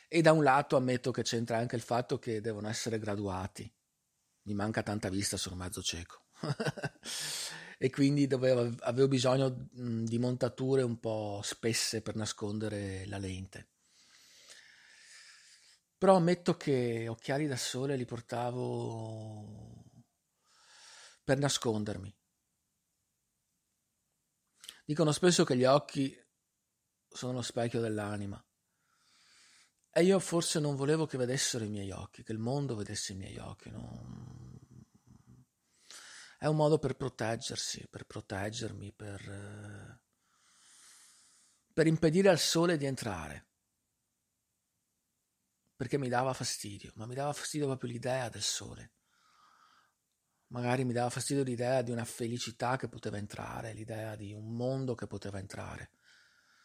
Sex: male